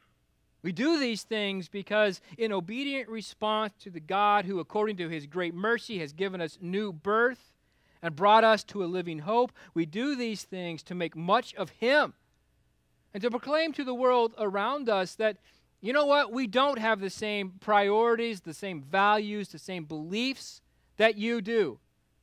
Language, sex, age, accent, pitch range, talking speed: English, male, 40-59, American, 145-210 Hz, 175 wpm